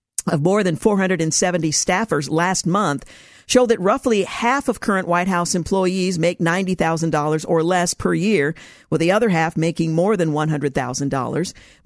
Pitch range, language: 160-195 Hz, English